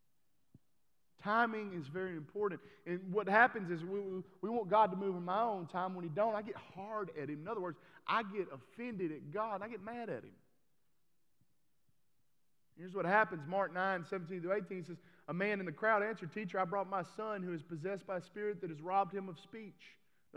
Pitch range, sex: 155-195 Hz, male